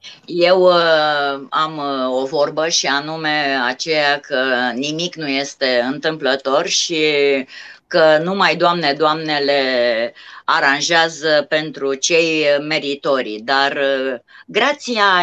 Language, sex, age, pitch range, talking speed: Romanian, female, 30-49, 155-210 Hz, 90 wpm